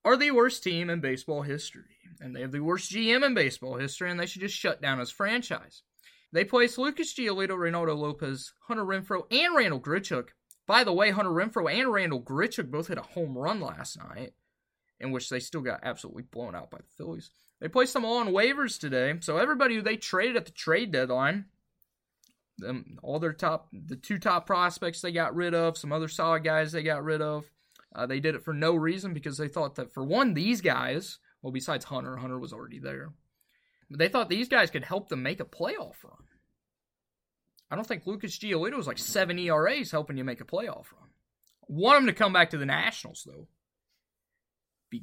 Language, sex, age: English, male, 20-39